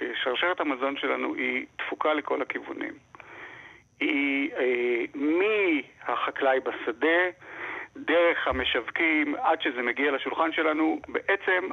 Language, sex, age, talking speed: Hebrew, male, 50-69, 90 wpm